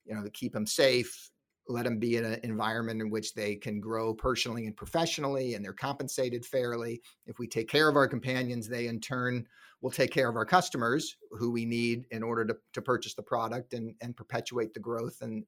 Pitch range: 115-135 Hz